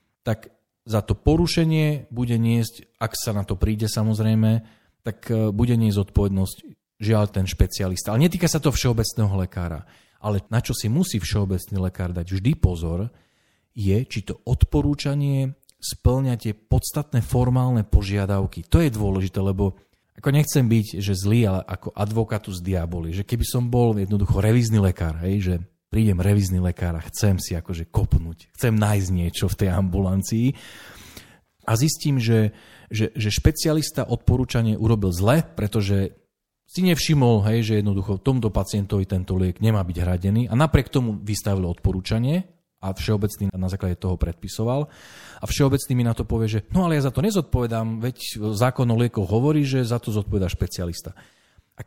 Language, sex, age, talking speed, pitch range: Slovak, male, 40-59, 160 wpm, 95-120 Hz